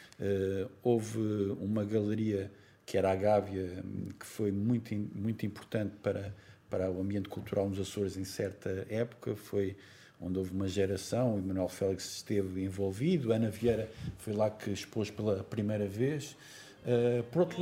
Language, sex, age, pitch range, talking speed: Portuguese, male, 50-69, 100-130 Hz, 155 wpm